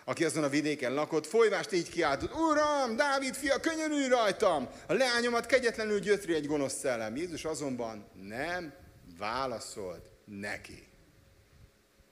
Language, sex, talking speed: Hungarian, male, 130 wpm